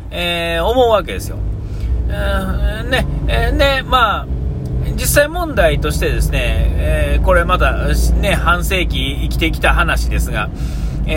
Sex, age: male, 40-59